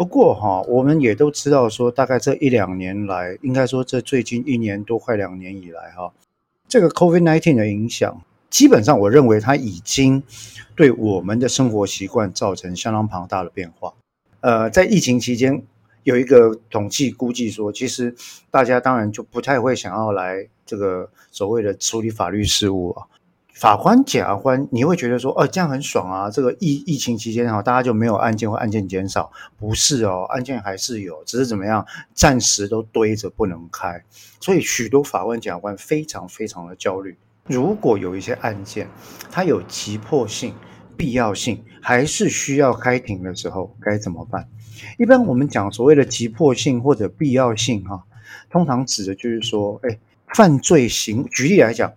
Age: 50-69